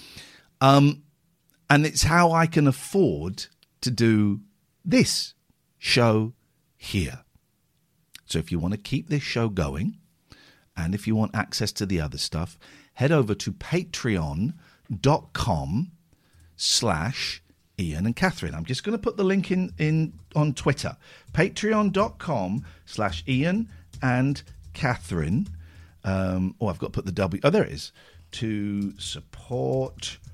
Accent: British